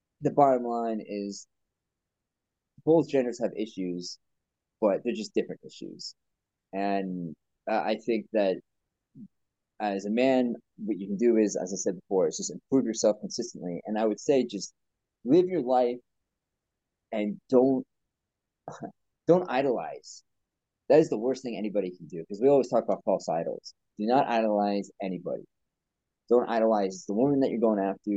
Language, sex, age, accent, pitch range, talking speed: English, male, 30-49, American, 100-125 Hz, 160 wpm